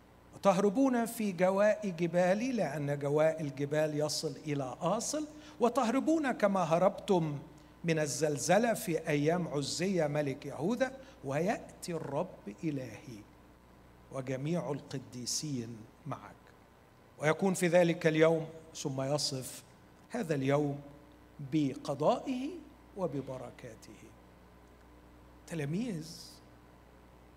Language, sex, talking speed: Arabic, male, 80 wpm